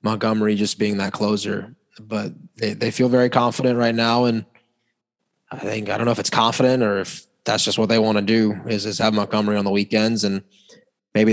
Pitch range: 110-135 Hz